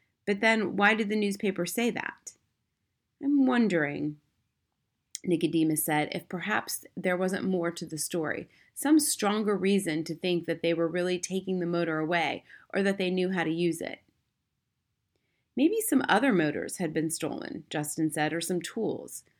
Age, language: 30-49, English